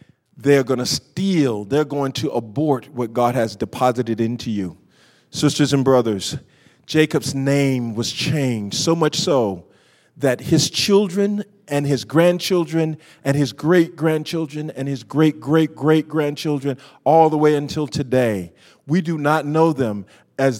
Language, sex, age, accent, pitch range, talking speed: English, male, 40-59, American, 135-210 Hz, 135 wpm